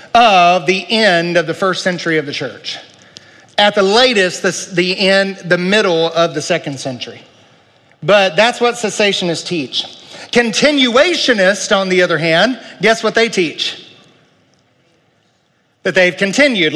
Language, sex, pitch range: English, male, 150-200 Hz